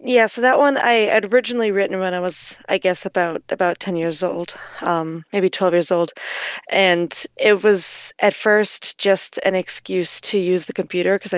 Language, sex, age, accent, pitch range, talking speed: English, female, 20-39, American, 175-205 Hz, 190 wpm